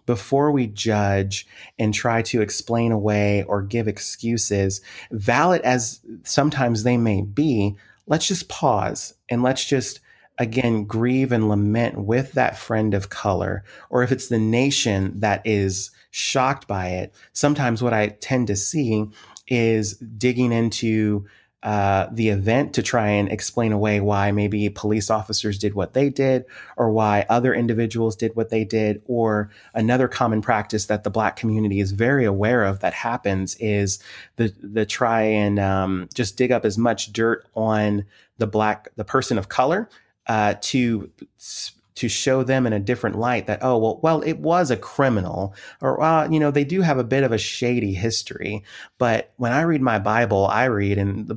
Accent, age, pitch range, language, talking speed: American, 30-49, 105-125 Hz, English, 175 wpm